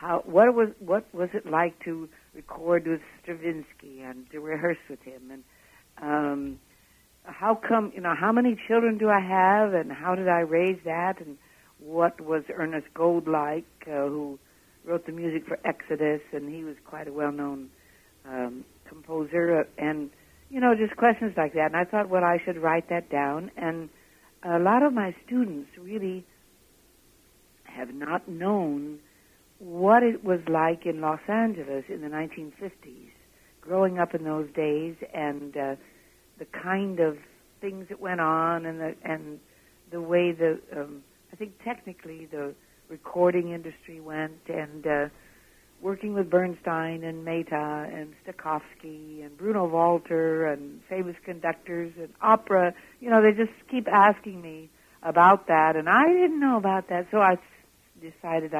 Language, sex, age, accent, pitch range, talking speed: English, female, 60-79, American, 155-190 Hz, 155 wpm